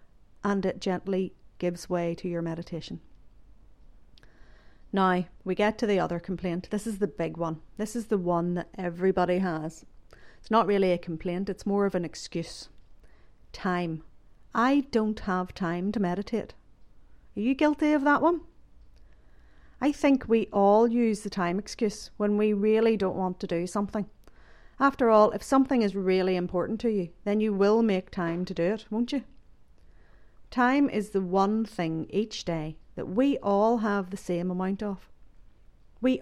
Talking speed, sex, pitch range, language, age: 165 wpm, female, 175-215 Hz, English, 50-69